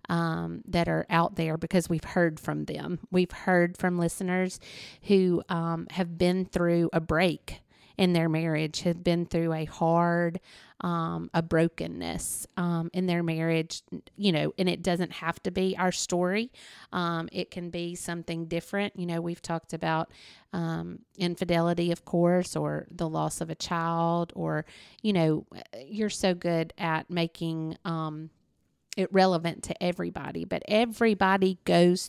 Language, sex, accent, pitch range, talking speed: English, female, American, 165-180 Hz, 155 wpm